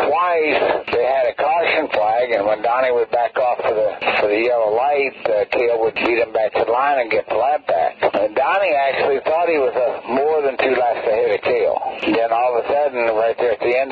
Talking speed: 245 wpm